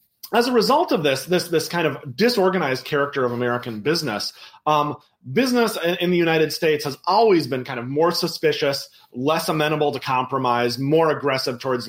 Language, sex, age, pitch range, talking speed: English, male, 30-49, 130-180 Hz, 175 wpm